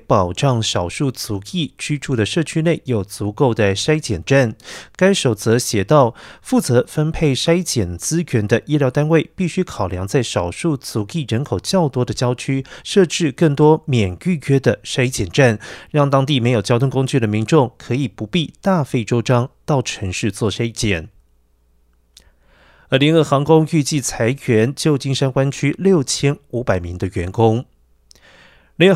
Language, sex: Chinese, male